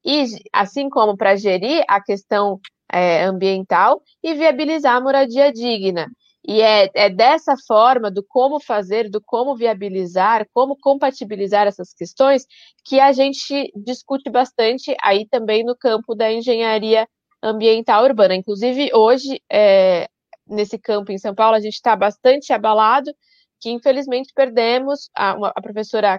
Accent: Brazilian